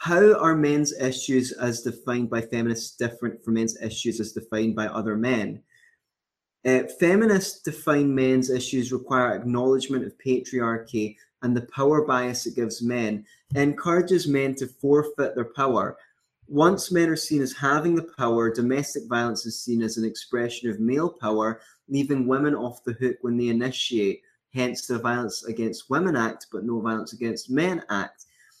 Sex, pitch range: male, 115-145 Hz